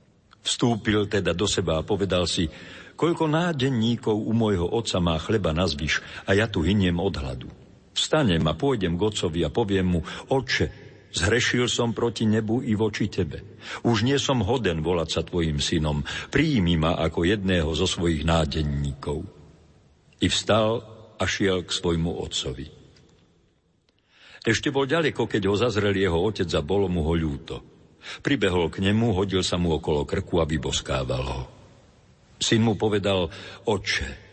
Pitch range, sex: 85-115 Hz, male